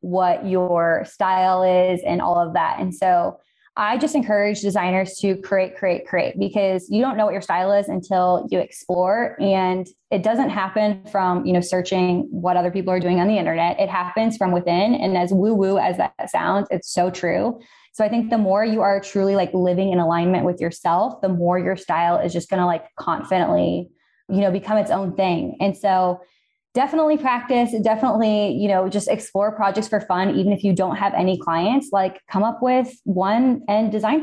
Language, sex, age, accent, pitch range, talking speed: English, female, 20-39, American, 185-215 Hz, 200 wpm